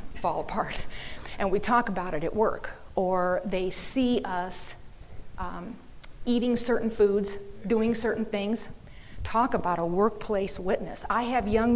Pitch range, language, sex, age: 200-255 Hz, English, female, 40-59